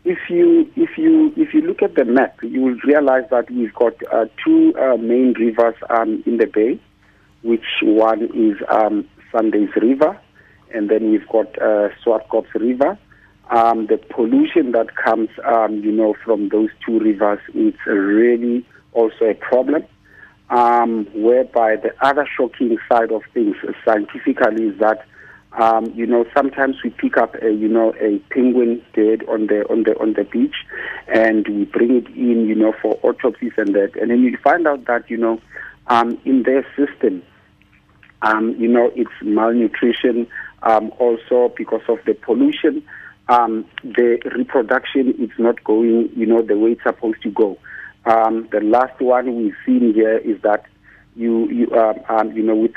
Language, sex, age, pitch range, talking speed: English, male, 50-69, 110-130 Hz, 170 wpm